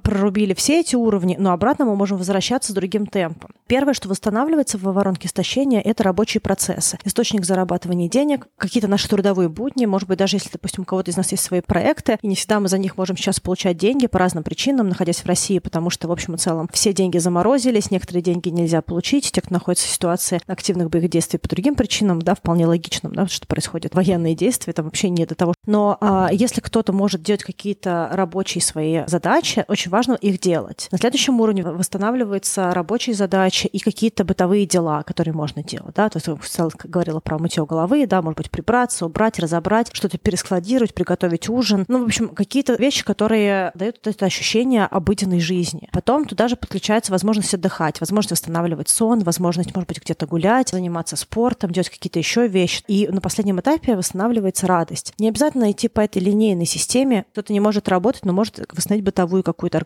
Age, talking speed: 30-49, 195 wpm